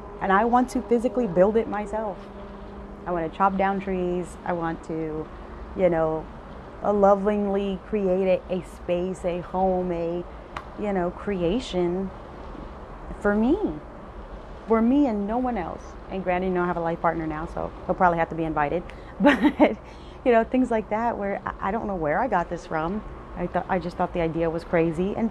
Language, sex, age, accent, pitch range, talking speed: English, female, 30-49, American, 170-210 Hz, 185 wpm